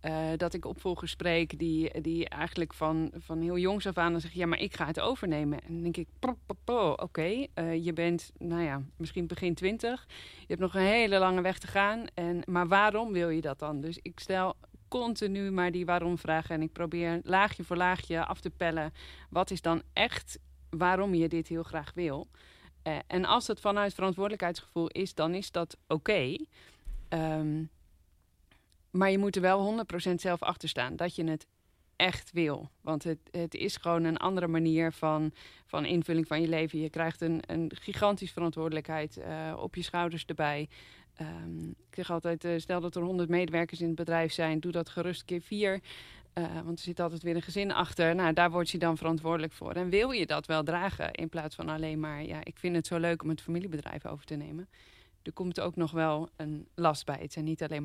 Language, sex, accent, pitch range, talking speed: Dutch, female, Dutch, 160-180 Hz, 205 wpm